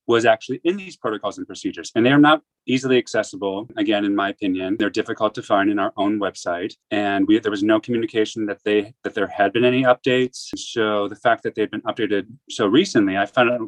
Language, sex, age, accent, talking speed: English, male, 30-49, American, 230 wpm